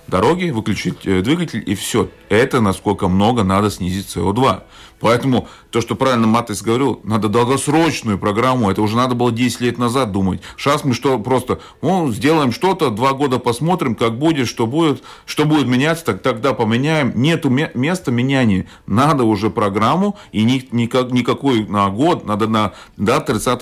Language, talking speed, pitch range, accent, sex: Russian, 175 wpm, 105-130 Hz, native, male